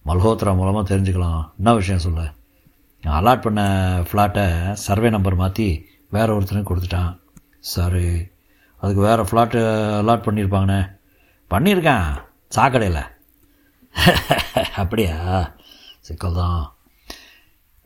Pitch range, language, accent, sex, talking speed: 90-105 Hz, Tamil, native, male, 85 wpm